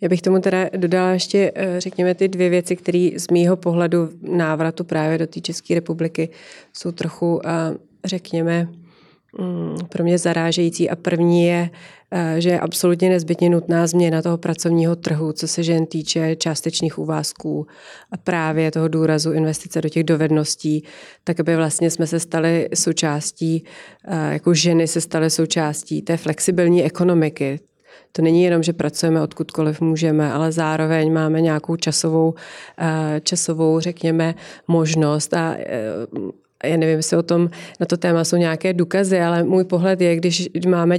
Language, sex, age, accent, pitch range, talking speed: Czech, female, 30-49, native, 165-175 Hz, 145 wpm